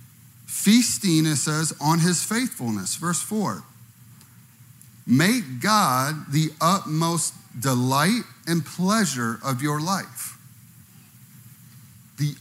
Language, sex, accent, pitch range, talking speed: English, male, American, 125-175 Hz, 90 wpm